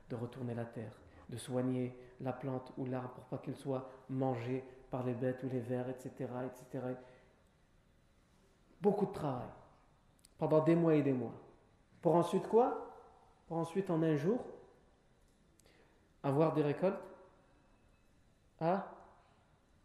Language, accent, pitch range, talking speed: French, French, 130-185 Hz, 135 wpm